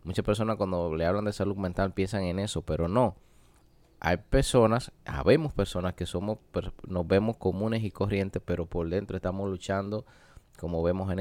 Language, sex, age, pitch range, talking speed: Spanish, male, 20-39, 85-100 Hz, 170 wpm